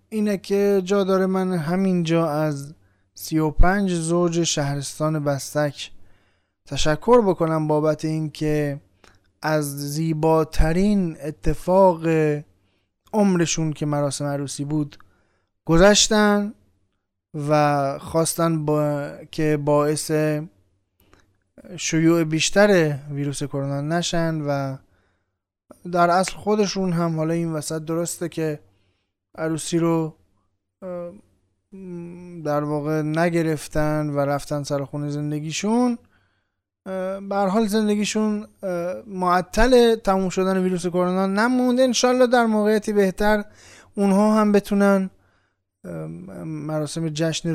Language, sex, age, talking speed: Persian, male, 20-39, 90 wpm